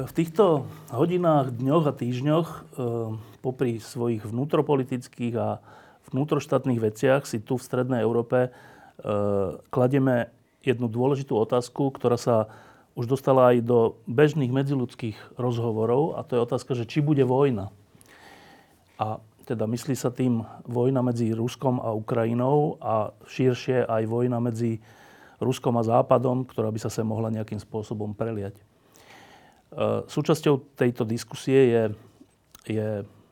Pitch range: 110-130 Hz